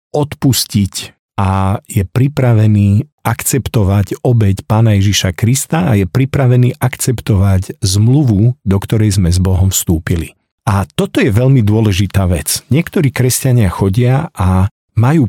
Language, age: Slovak, 50-69